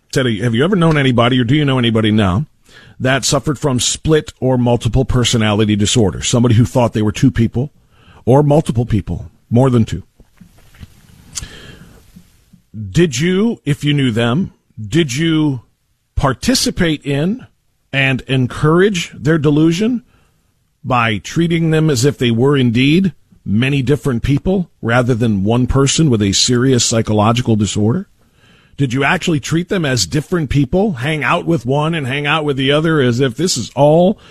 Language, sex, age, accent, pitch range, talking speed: English, male, 50-69, American, 115-160 Hz, 155 wpm